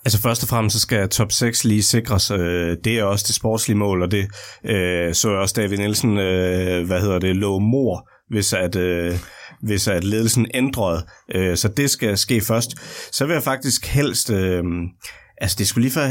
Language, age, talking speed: Danish, 30-49, 185 wpm